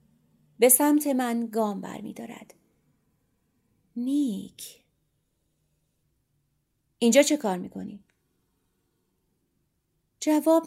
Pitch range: 190-235 Hz